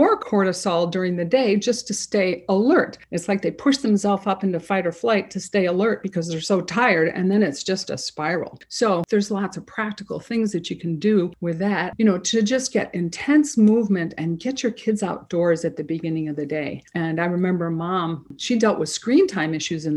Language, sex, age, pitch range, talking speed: English, female, 50-69, 170-215 Hz, 220 wpm